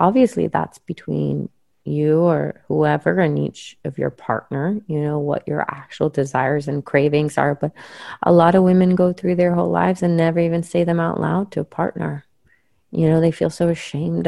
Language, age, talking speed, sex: English, 30-49, 195 wpm, female